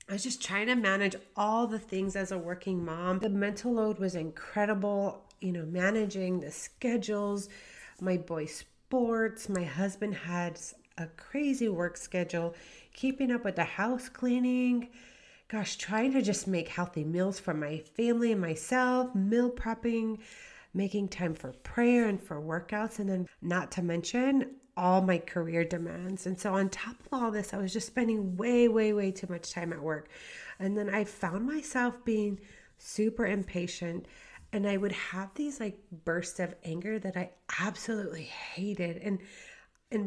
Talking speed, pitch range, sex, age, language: 165 wpm, 180-225 Hz, female, 30-49, English